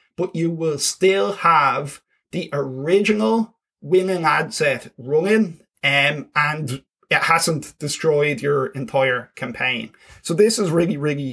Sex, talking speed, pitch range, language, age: male, 125 wpm, 135-170 Hz, English, 20-39